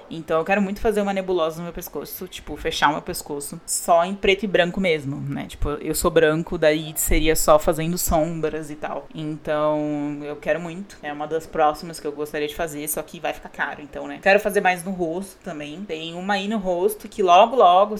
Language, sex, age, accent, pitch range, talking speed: Portuguese, female, 20-39, Brazilian, 155-205 Hz, 225 wpm